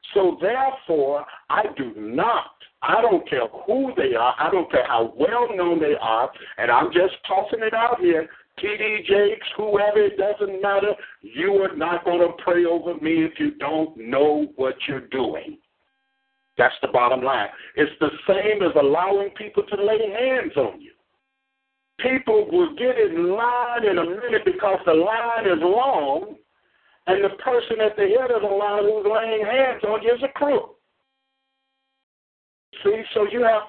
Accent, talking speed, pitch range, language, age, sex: American, 170 wpm, 180-295 Hz, English, 60-79, male